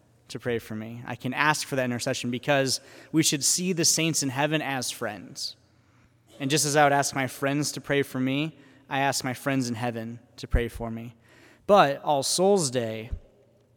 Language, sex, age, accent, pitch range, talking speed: English, male, 20-39, American, 125-150 Hz, 200 wpm